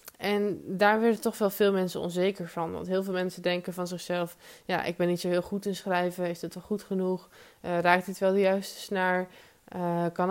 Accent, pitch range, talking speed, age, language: Dutch, 175-195 Hz, 225 wpm, 20-39, Dutch